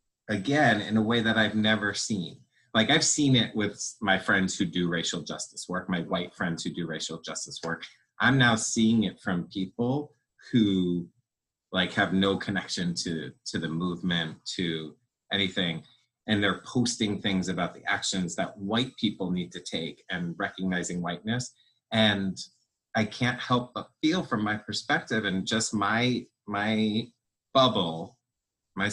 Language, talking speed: English, 160 wpm